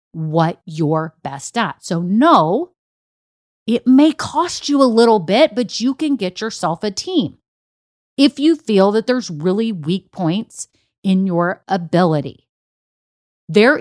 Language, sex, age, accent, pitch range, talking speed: English, female, 30-49, American, 175-270 Hz, 140 wpm